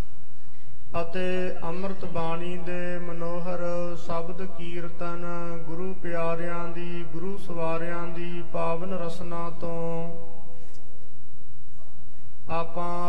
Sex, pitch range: male, 165-175 Hz